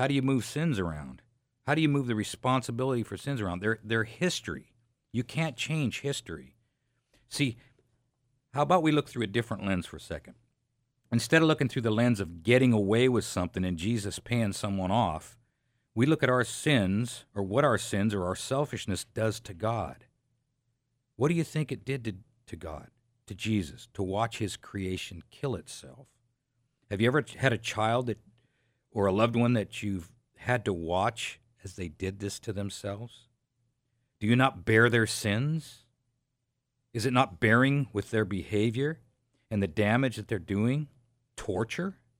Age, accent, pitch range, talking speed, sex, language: 50-69, American, 105-130 Hz, 175 wpm, male, English